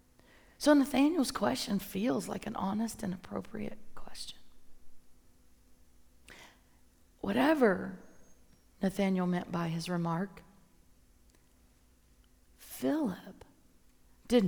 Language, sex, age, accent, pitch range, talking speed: English, female, 40-59, American, 180-255 Hz, 75 wpm